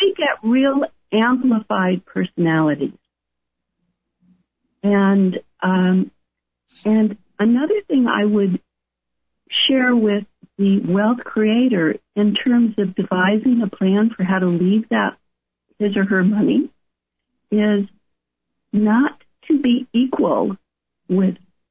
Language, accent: English, American